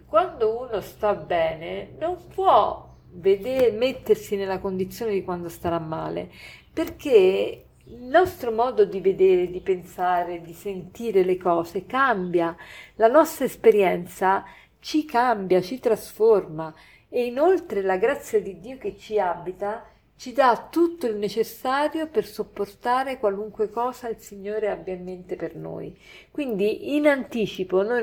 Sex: female